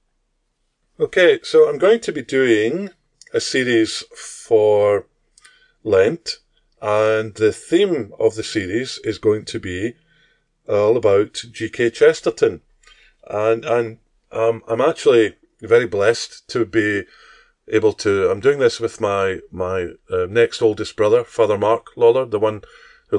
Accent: British